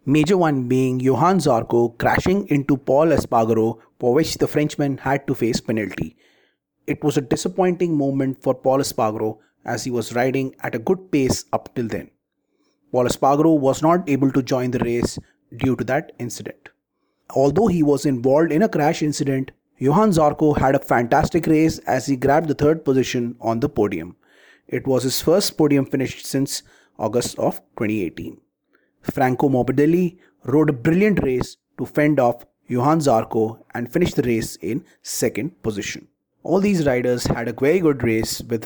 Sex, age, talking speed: male, 30-49, 170 wpm